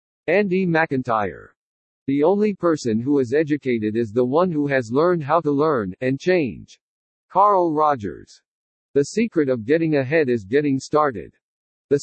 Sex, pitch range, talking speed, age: male, 130-170 Hz, 150 wpm, 50-69